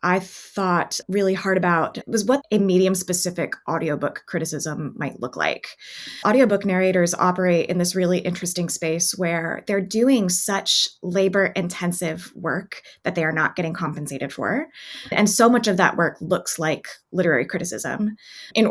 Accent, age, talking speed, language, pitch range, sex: American, 20-39, 155 wpm, English, 165-210 Hz, female